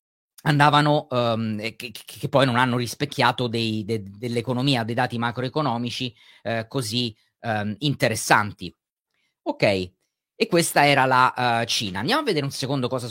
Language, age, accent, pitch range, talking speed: Italian, 30-49, native, 120-150 Hz, 115 wpm